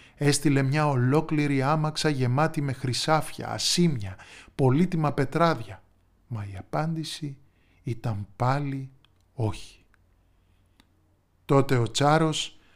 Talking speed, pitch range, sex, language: 90 wpm, 105-155 Hz, male, Greek